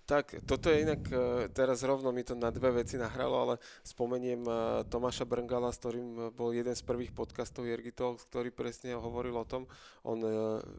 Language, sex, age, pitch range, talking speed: Slovak, male, 20-39, 115-125 Hz, 165 wpm